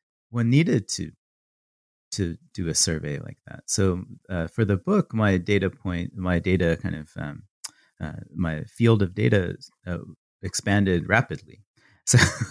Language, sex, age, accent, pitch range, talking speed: English, male, 30-49, American, 85-110 Hz, 150 wpm